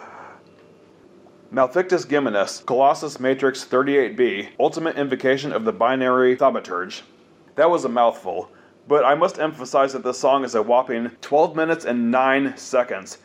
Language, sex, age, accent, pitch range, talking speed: English, male, 30-49, American, 120-145 Hz, 135 wpm